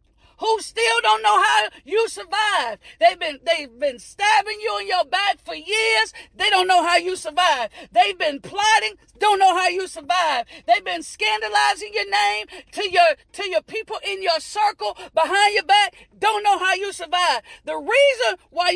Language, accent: English, American